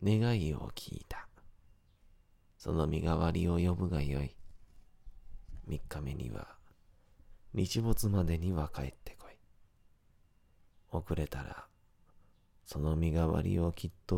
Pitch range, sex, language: 75-95 Hz, male, Japanese